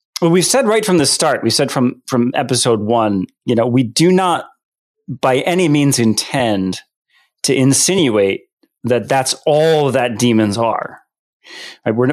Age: 30-49